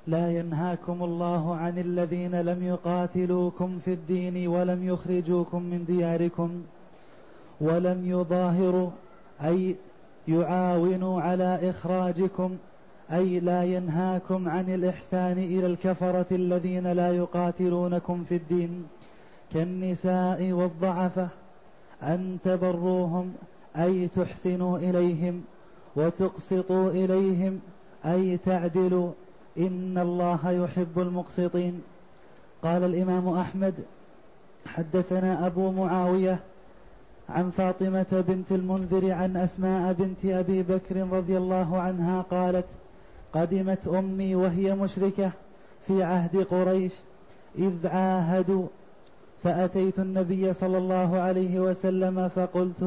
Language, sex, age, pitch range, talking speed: Arabic, male, 30-49, 180-185 Hz, 90 wpm